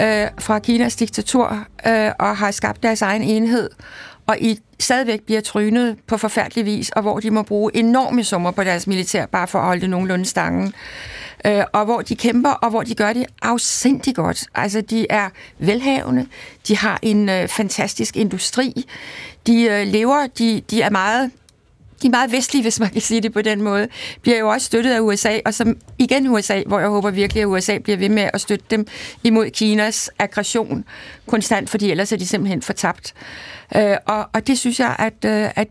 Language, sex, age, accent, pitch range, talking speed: Danish, female, 60-79, native, 210-235 Hz, 180 wpm